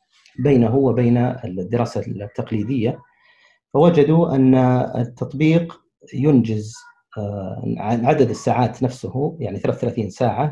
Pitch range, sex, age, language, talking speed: 115-150 Hz, male, 40-59, Arabic, 80 wpm